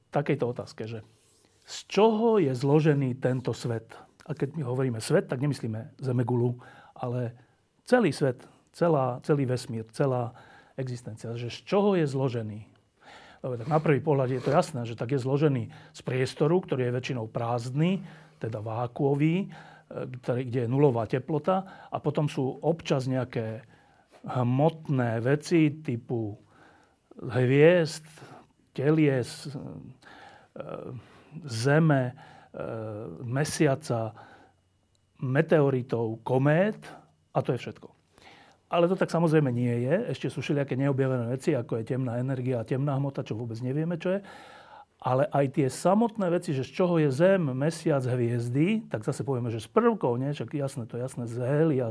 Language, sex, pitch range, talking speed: Slovak, male, 125-155 Hz, 140 wpm